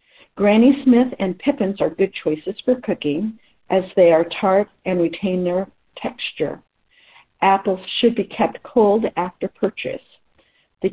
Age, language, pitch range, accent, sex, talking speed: 60-79, English, 175-225 Hz, American, female, 135 wpm